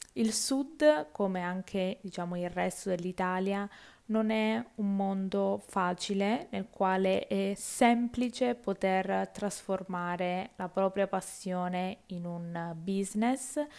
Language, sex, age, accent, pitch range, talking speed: Italian, female, 20-39, native, 185-225 Hz, 110 wpm